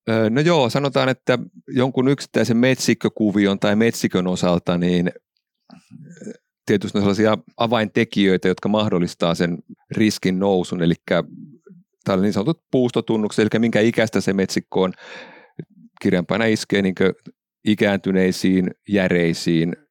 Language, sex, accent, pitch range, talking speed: Finnish, male, native, 90-105 Hz, 110 wpm